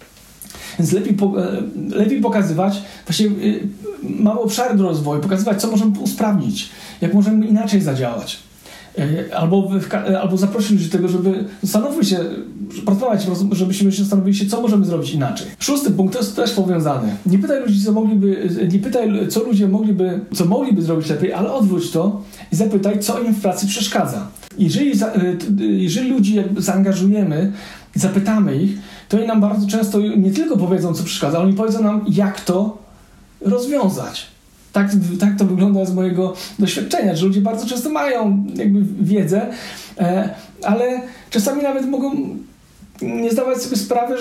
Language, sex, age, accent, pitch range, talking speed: Polish, male, 40-59, native, 190-220 Hz, 150 wpm